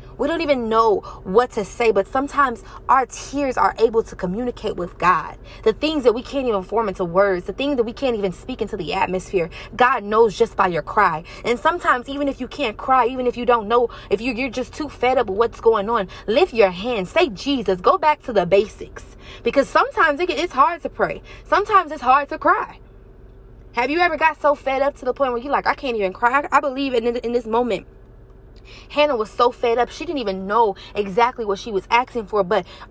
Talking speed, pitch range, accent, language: 225 wpm, 215-285 Hz, American, English